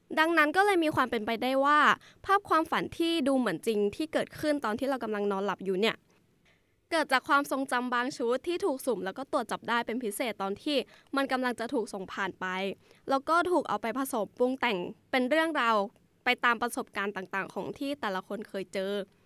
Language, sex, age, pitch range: English, female, 10-29, 210-290 Hz